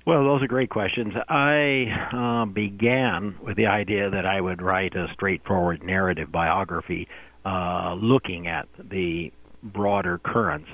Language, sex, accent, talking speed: English, male, American, 140 wpm